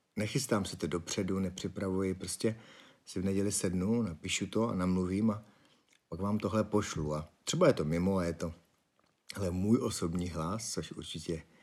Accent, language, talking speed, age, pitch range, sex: native, Czech, 170 wpm, 50-69, 90-110 Hz, male